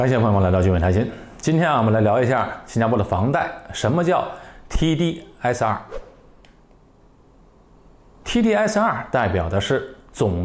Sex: male